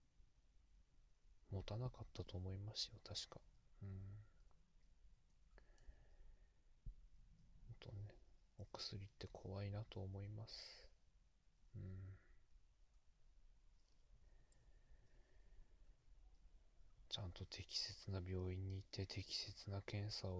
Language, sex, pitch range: Japanese, male, 85-105 Hz